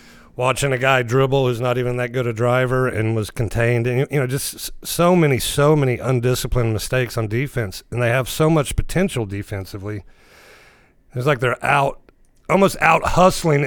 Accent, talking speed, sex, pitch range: American, 175 wpm, male, 120-140 Hz